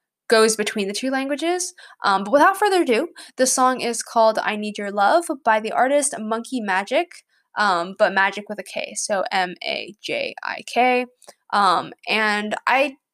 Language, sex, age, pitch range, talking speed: English, female, 10-29, 200-260 Hz, 155 wpm